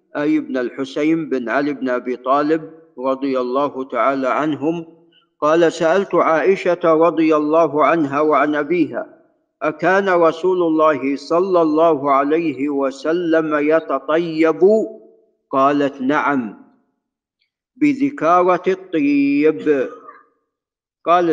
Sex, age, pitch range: male, 50-69, 145-175 Hz